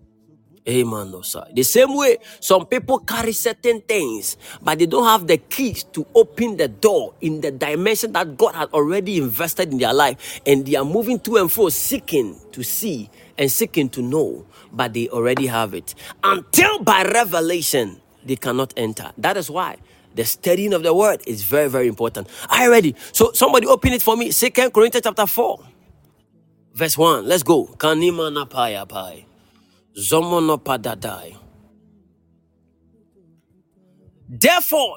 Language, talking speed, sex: English, 150 wpm, male